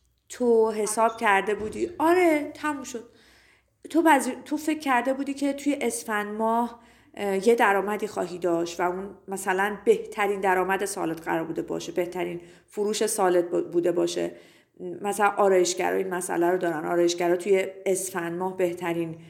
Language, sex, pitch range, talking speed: Persian, female, 180-255 Hz, 150 wpm